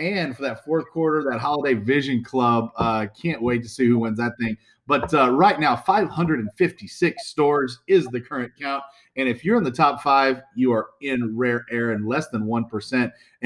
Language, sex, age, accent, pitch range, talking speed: English, male, 40-59, American, 120-160 Hz, 195 wpm